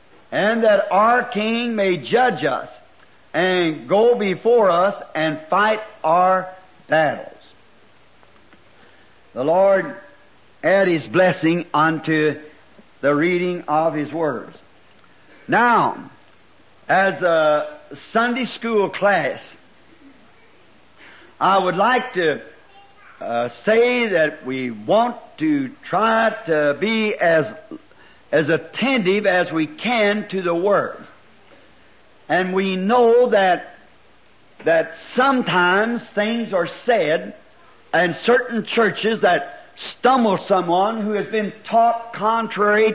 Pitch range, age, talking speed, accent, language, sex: 170-230 Hz, 60-79, 105 wpm, American, English, male